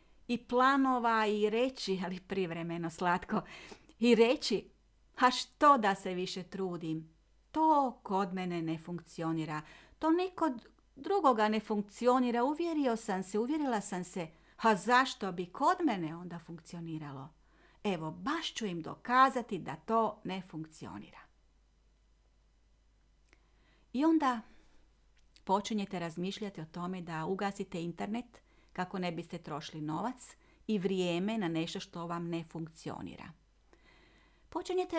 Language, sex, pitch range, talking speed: Croatian, female, 170-245 Hz, 120 wpm